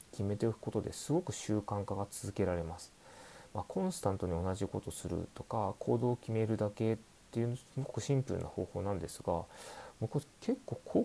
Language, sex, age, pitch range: Japanese, male, 30-49, 100-125 Hz